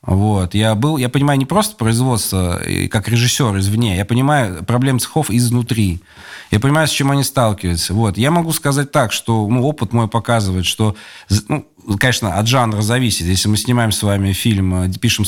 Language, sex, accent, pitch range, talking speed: Russian, male, native, 95-120 Hz, 175 wpm